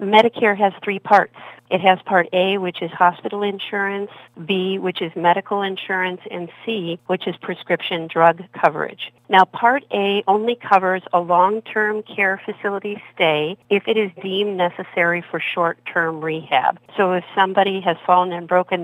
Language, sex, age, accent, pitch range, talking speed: English, female, 50-69, American, 170-200 Hz, 155 wpm